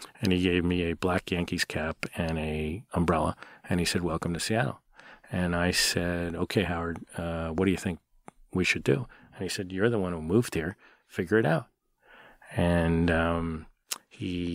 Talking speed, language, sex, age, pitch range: 185 wpm, English, male, 40-59, 85-90 Hz